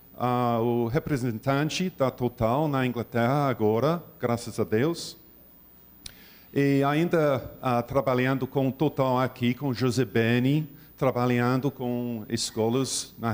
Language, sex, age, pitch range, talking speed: Portuguese, male, 50-69, 120-155 Hz, 120 wpm